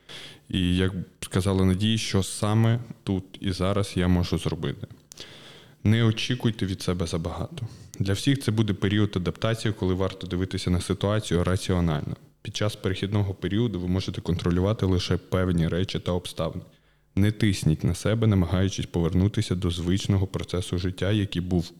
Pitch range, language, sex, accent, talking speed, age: 90-115 Hz, Ukrainian, male, native, 145 wpm, 20-39